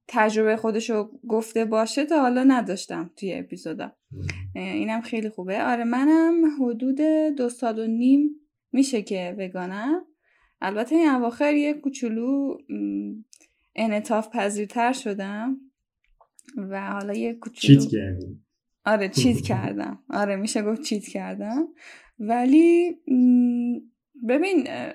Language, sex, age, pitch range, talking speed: Persian, female, 10-29, 205-290 Hz, 110 wpm